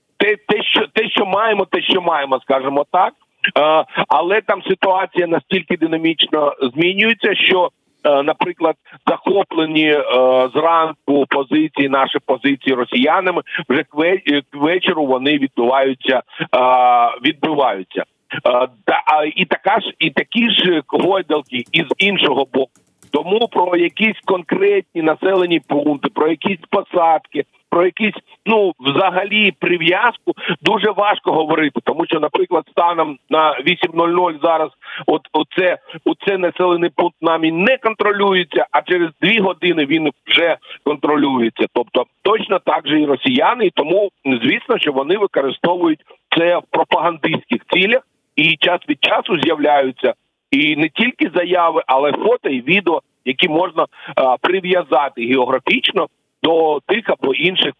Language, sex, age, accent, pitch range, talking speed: Ukrainian, male, 50-69, native, 145-195 Hz, 125 wpm